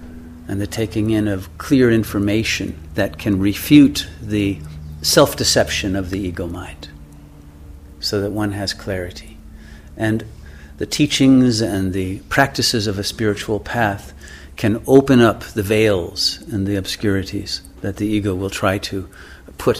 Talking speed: 135 wpm